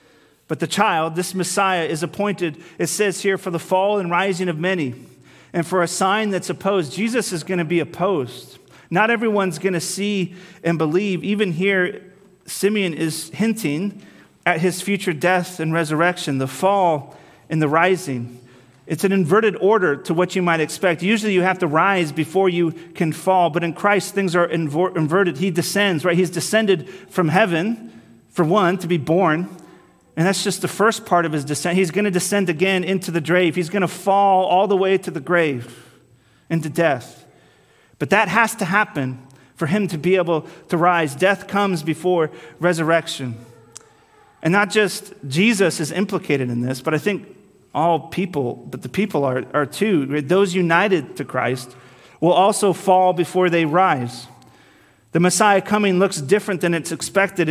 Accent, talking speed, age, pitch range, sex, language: American, 175 wpm, 40-59, 160-195 Hz, male, English